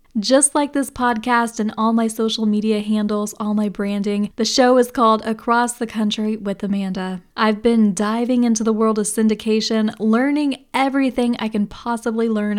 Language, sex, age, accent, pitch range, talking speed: English, female, 10-29, American, 210-240 Hz, 170 wpm